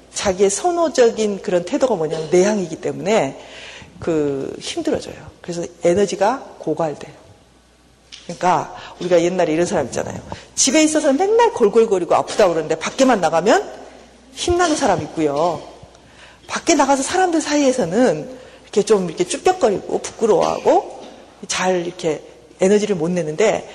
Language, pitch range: Korean, 175-285 Hz